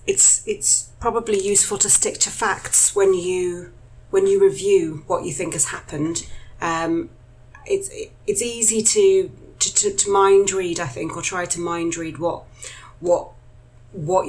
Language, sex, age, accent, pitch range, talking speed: English, female, 30-49, British, 155-185 Hz, 160 wpm